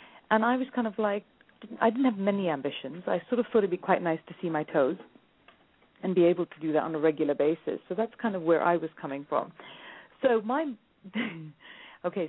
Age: 40-59